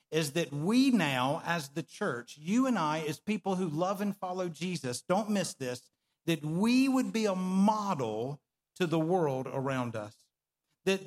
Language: English